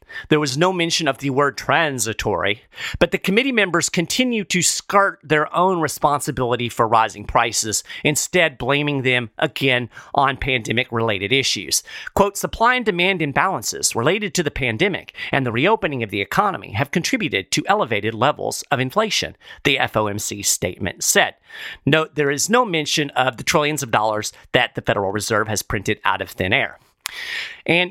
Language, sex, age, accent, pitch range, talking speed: English, male, 40-59, American, 125-185 Hz, 160 wpm